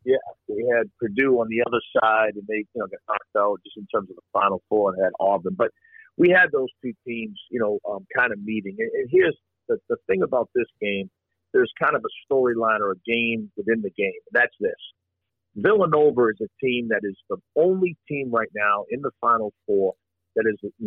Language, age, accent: English, 50-69, American